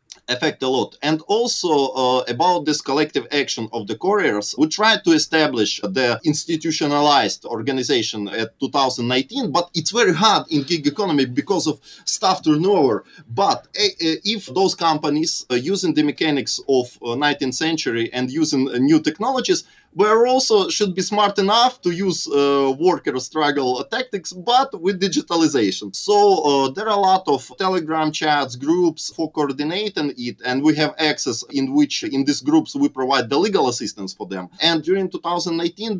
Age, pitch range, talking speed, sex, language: 20-39, 140-215 Hz, 165 wpm, male, English